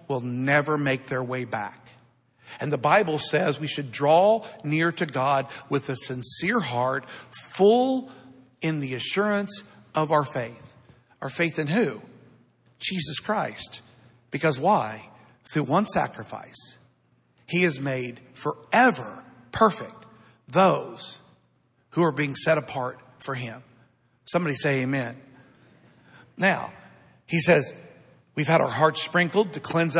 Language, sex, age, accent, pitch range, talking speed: English, male, 50-69, American, 135-200 Hz, 130 wpm